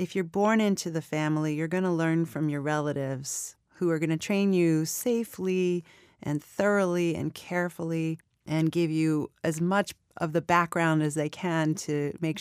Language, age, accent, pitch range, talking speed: English, 30-49, American, 155-190 Hz, 180 wpm